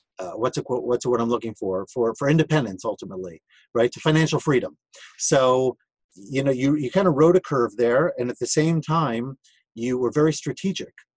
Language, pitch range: English, 120-155 Hz